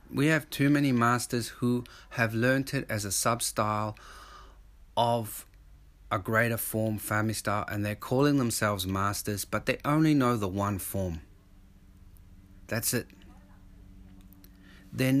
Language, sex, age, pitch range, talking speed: English, male, 40-59, 90-120 Hz, 130 wpm